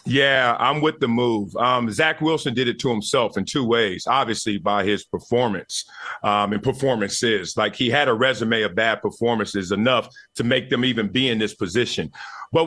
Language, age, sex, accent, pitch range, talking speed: English, 40-59, male, American, 135-190 Hz, 190 wpm